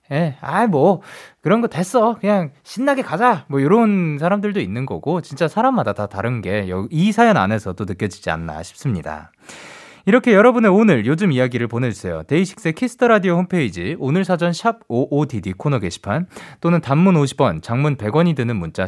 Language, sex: Korean, male